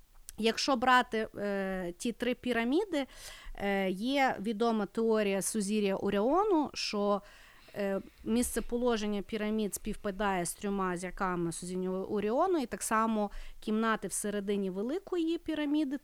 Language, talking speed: Ukrainian, 105 wpm